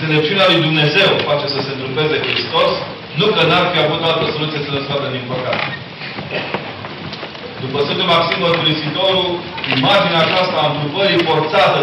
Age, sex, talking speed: 40-59, male, 150 wpm